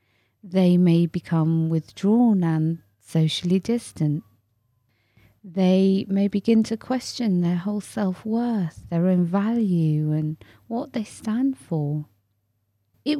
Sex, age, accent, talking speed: female, 30-49, British, 110 wpm